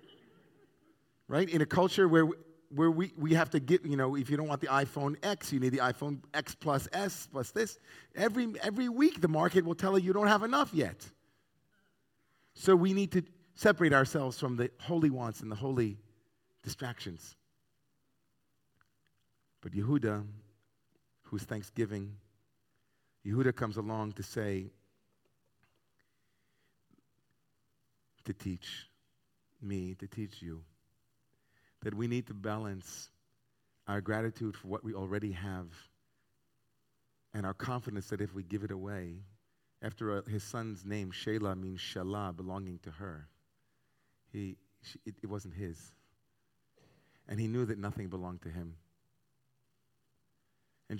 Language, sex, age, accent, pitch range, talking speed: English, male, 40-59, American, 100-135 Hz, 140 wpm